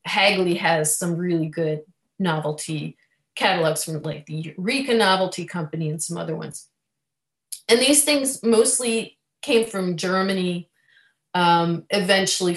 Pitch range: 170-225 Hz